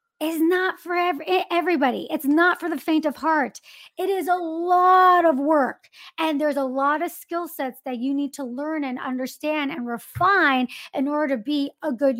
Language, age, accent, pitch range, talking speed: English, 40-59, American, 270-330 Hz, 190 wpm